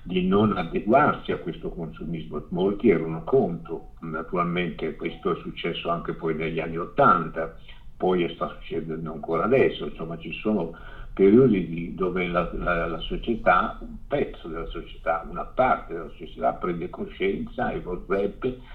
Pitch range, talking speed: 85-105 Hz, 145 wpm